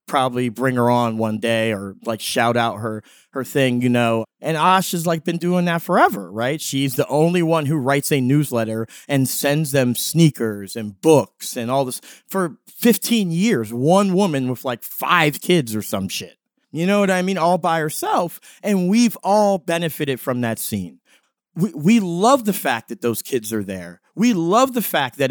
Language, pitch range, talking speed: English, 125-205 Hz, 195 wpm